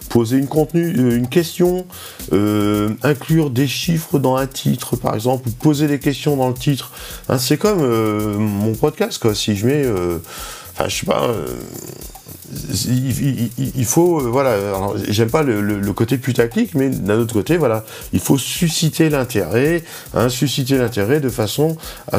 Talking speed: 170 wpm